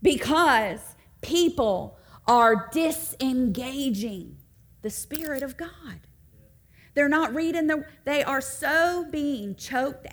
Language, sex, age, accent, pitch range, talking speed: English, female, 40-59, American, 185-310 Hz, 100 wpm